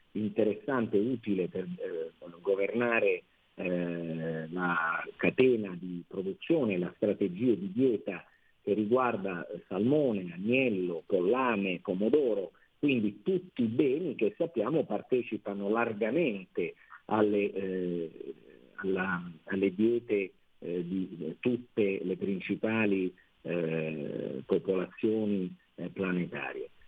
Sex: male